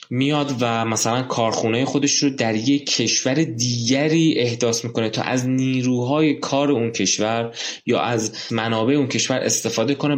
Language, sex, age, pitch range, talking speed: Persian, male, 20-39, 110-140 Hz, 145 wpm